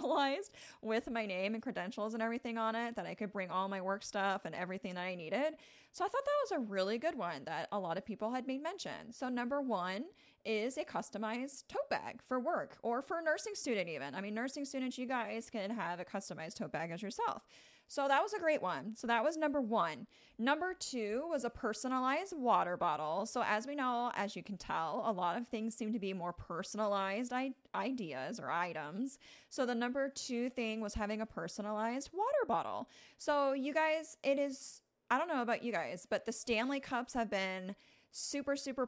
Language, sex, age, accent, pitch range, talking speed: English, female, 30-49, American, 195-255 Hz, 210 wpm